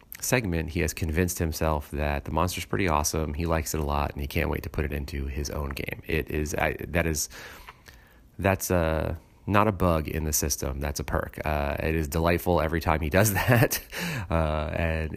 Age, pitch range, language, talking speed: 30-49, 70-85 Hz, English, 220 wpm